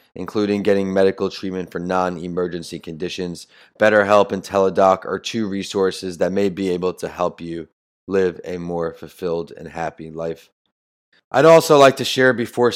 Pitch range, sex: 95-115 Hz, male